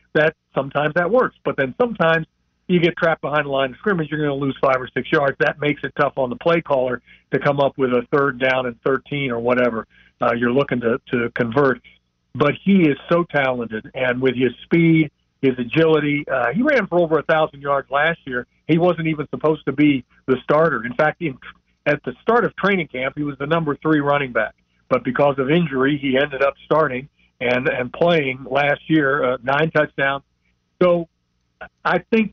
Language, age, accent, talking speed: English, 50-69, American, 205 wpm